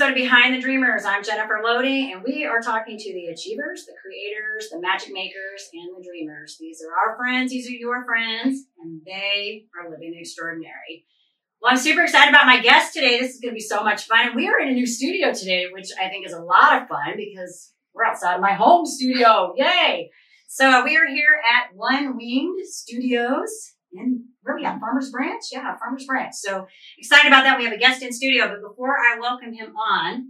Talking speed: 215 wpm